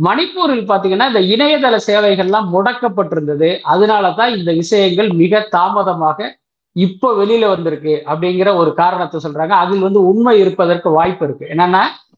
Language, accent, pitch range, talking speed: Tamil, native, 185-240 Hz, 120 wpm